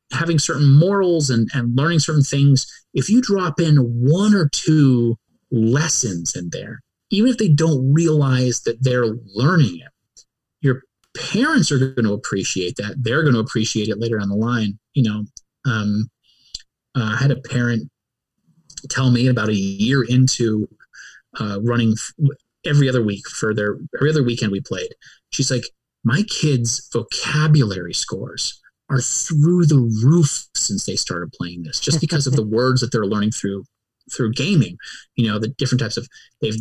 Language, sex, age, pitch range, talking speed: English, male, 30-49, 110-145 Hz, 165 wpm